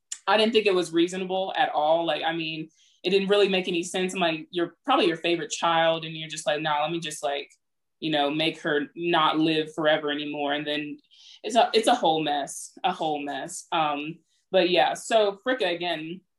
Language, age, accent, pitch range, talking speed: English, 20-39, American, 160-195 Hz, 210 wpm